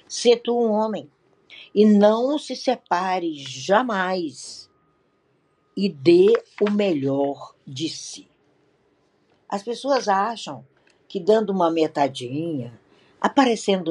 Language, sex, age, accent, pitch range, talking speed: Portuguese, female, 60-79, Brazilian, 150-225 Hz, 100 wpm